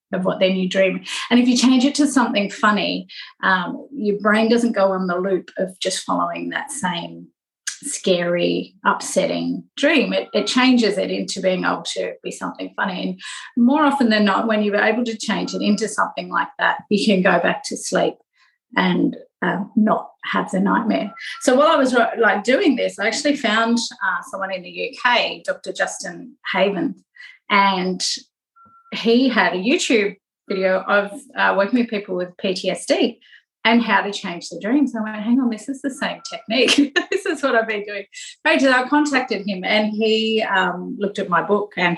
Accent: Australian